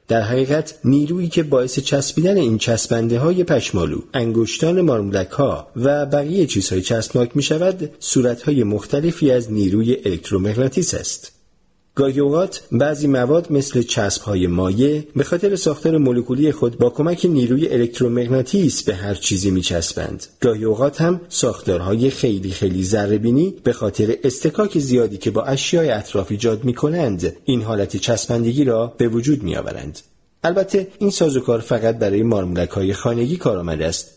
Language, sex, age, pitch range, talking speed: Persian, male, 40-59, 105-145 Hz, 135 wpm